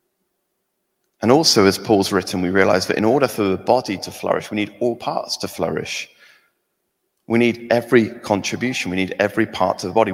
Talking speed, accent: 190 wpm, British